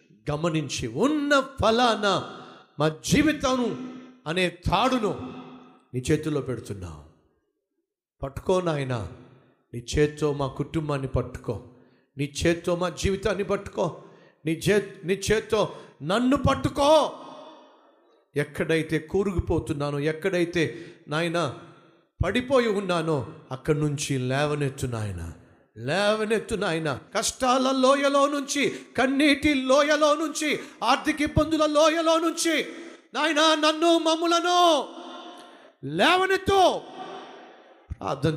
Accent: native